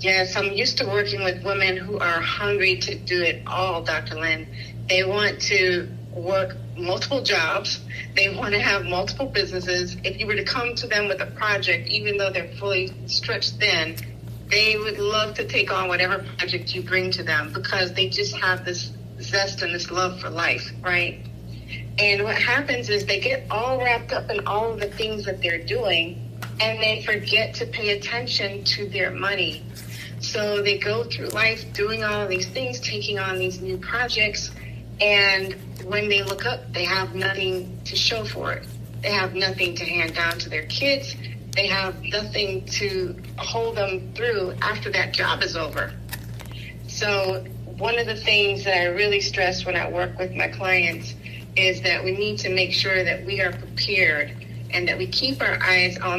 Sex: female